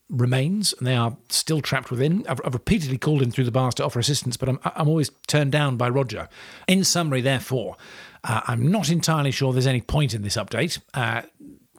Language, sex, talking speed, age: English, male, 210 wpm, 40-59